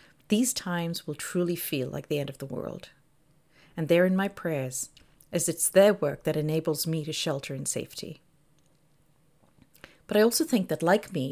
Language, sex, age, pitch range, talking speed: English, female, 50-69, 145-190 Hz, 180 wpm